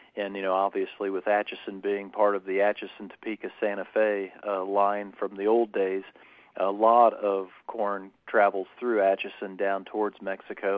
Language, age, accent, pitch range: English, 40-59, American, 100-110 Hz